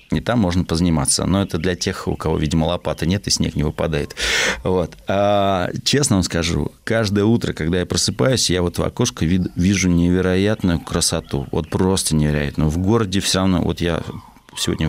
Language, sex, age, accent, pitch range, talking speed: Russian, male, 30-49, native, 85-110 Hz, 180 wpm